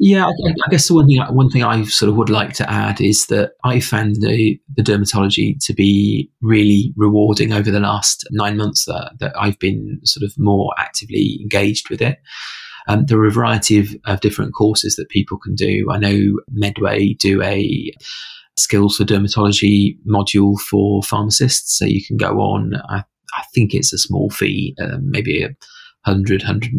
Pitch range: 100-115 Hz